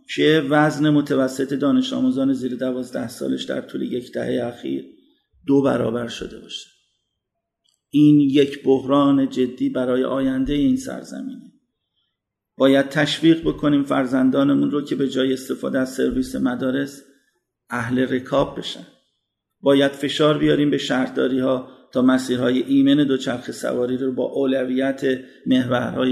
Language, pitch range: Persian, 125-155 Hz